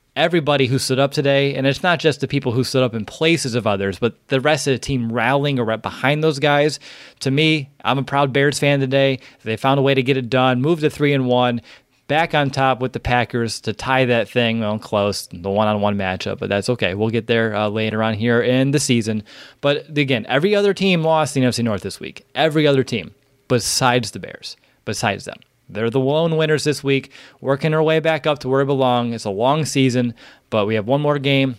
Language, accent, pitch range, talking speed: English, American, 120-145 Hz, 235 wpm